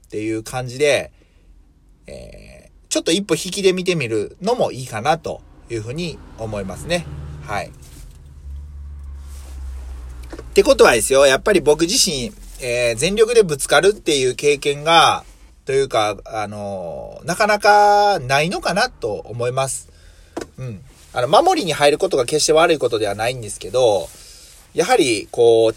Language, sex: Japanese, male